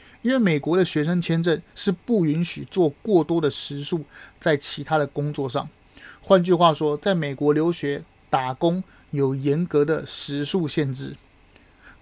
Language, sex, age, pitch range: Chinese, male, 30-49, 145-180 Hz